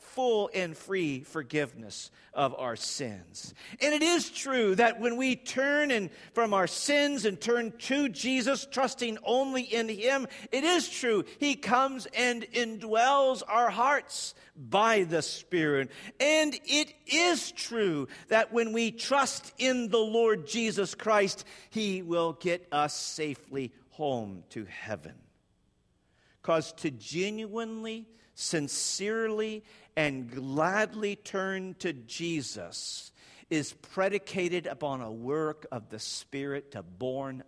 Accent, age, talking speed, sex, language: American, 50-69, 125 wpm, male, English